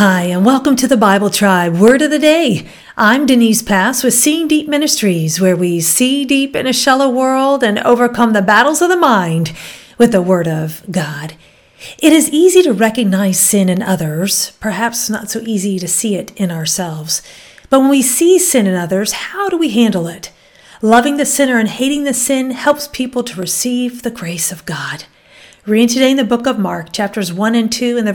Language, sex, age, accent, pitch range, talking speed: English, female, 50-69, American, 190-270 Hz, 205 wpm